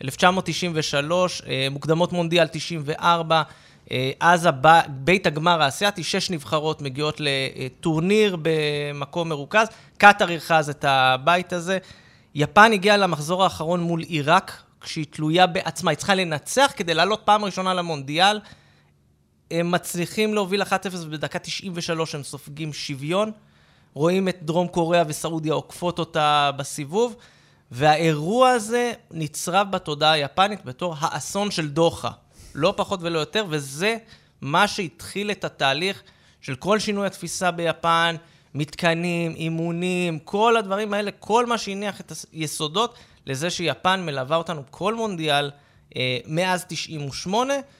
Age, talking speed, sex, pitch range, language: 20-39, 120 wpm, male, 155-195 Hz, Hebrew